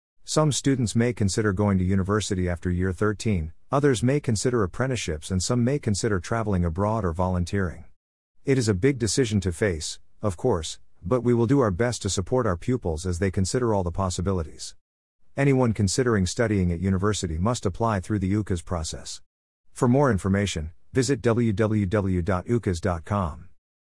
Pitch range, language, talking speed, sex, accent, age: 90-115 Hz, English, 160 wpm, male, American, 50-69